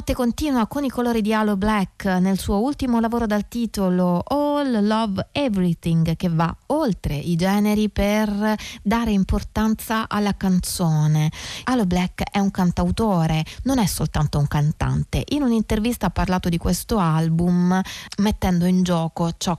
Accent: native